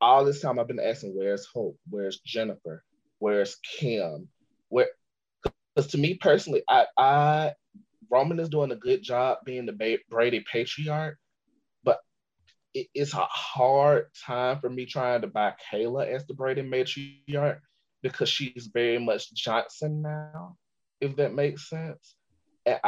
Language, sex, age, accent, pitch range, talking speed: English, male, 20-39, American, 115-155 Hz, 145 wpm